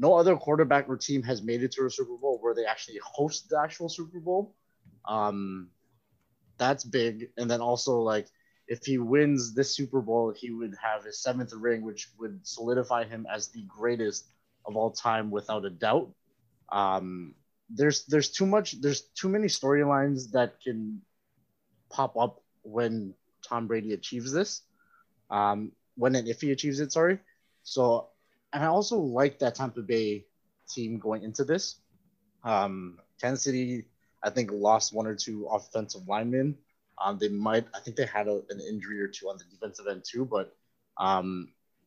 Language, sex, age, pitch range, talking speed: English, male, 20-39, 105-140 Hz, 175 wpm